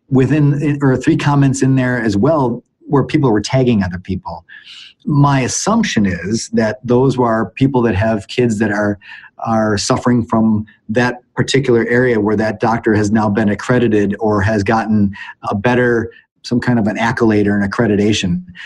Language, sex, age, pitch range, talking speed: English, male, 30-49, 110-140 Hz, 165 wpm